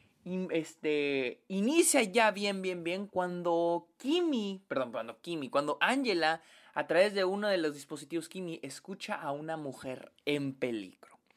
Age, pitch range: 20-39, 140-230 Hz